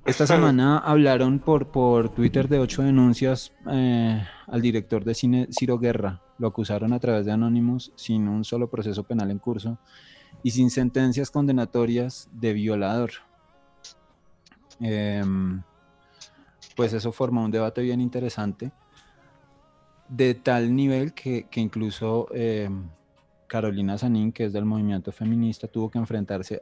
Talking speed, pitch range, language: 135 wpm, 105-125 Hz, English